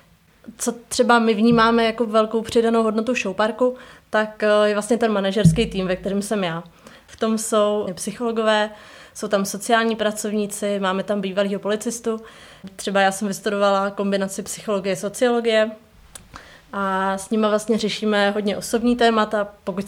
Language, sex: Czech, female